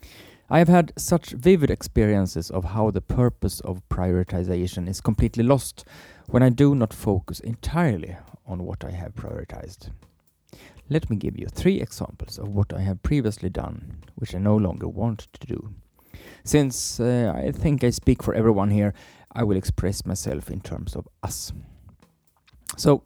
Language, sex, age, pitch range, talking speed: English, male, 30-49, 95-125 Hz, 165 wpm